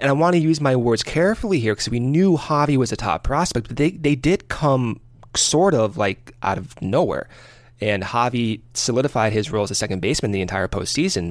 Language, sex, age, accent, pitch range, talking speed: English, male, 30-49, American, 110-150 Hz, 210 wpm